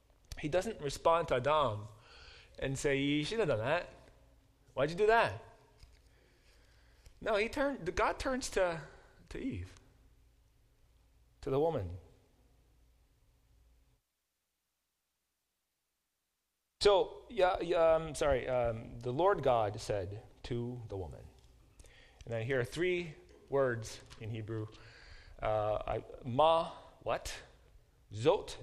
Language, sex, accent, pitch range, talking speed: English, male, American, 110-145 Hz, 110 wpm